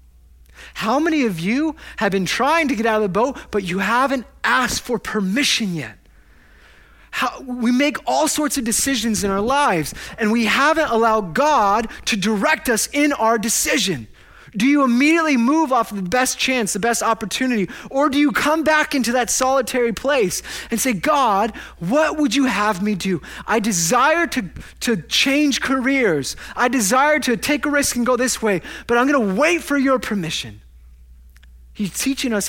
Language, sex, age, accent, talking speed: English, male, 30-49, American, 175 wpm